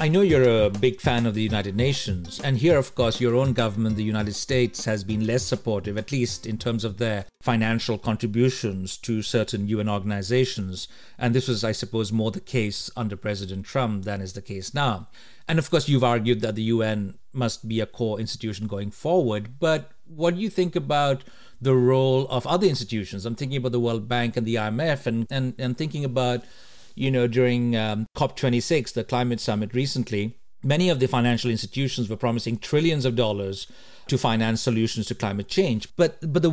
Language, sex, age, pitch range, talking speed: English, male, 50-69, 110-160 Hz, 195 wpm